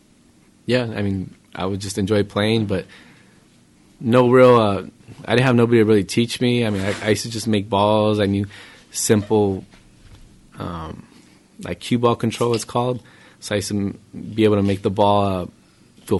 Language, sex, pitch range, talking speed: English, male, 95-110 Hz, 190 wpm